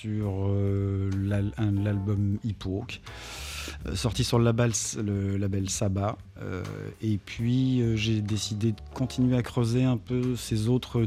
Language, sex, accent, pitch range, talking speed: French, male, French, 95-115 Hz, 150 wpm